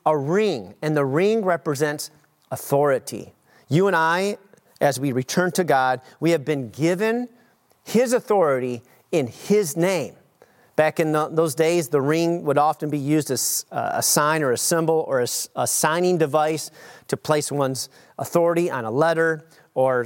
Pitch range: 140-175 Hz